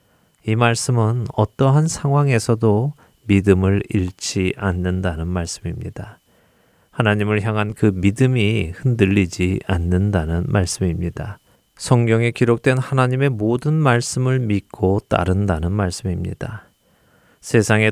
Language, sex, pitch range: Korean, male, 90-120 Hz